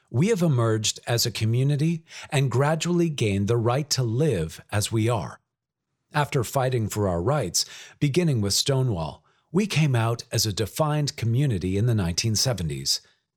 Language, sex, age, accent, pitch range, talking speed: English, male, 50-69, American, 105-145 Hz, 155 wpm